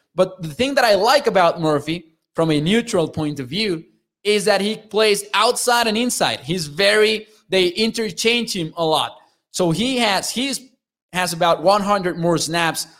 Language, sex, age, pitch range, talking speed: English, male, 20-39, 150-195 Hz, 170 wpm